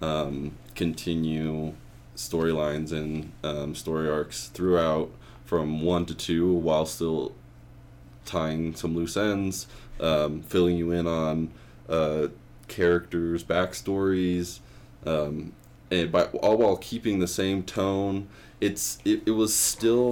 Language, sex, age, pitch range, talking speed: English, male, 20-39, 75-95 Hz, 120 wpm